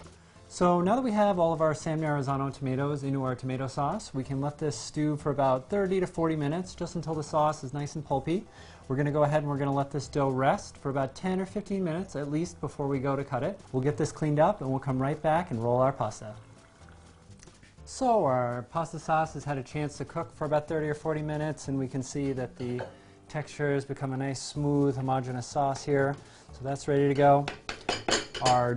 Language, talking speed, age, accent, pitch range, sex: English, 235 wpm, 30-49, American, 125-150 Hz, male